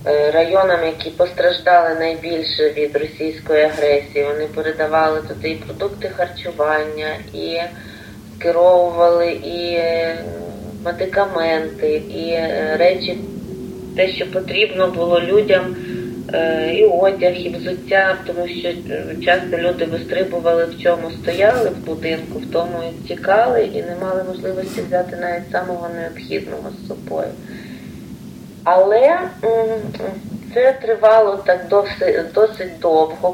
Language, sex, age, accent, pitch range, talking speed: Ukrainian, female, 20-39, native, 170-195 Hz, 105 wpm